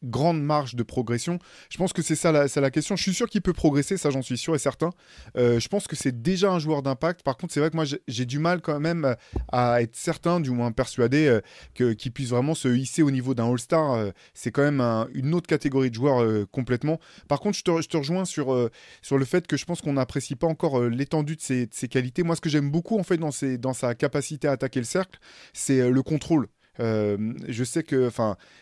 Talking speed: 260 wpm